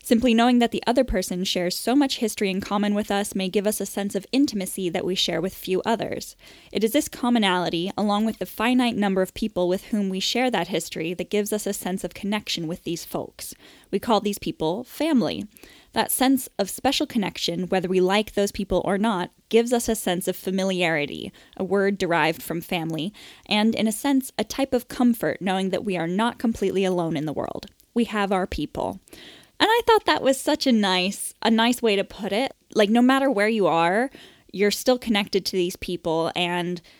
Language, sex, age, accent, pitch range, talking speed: English, female, 10-29, American, 185-230 Hz, 210 wpm